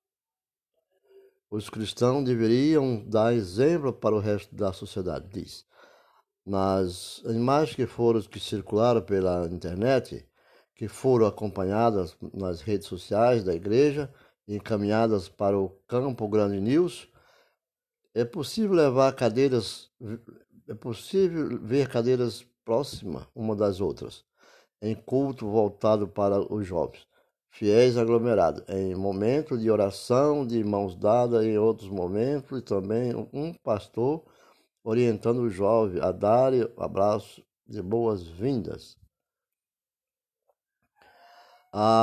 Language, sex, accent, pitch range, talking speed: Portuguese, male, Brazilian, 100-130 Hz, 110 wpm